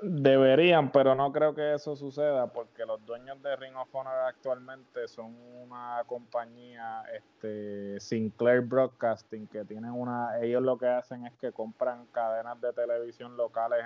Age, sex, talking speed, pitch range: 20-39, male, 150 wpm, 110-130 Hz